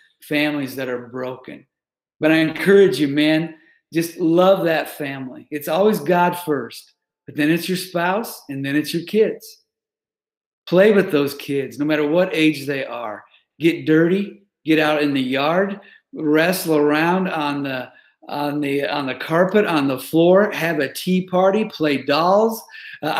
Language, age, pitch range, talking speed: English, 50-69, 150-180 Hz, 165 wpm